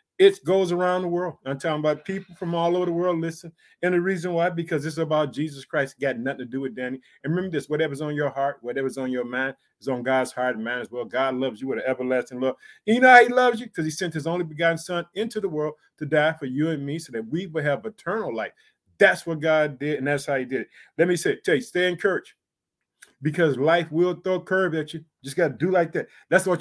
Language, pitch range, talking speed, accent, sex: English, 140-180 Hz, 275 wpm, American, male